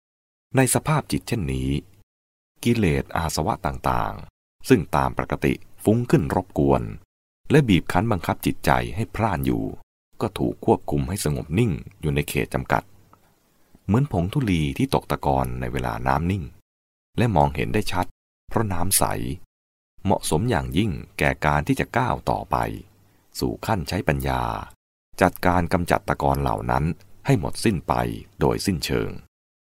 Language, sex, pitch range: English, male, 70-100 Hz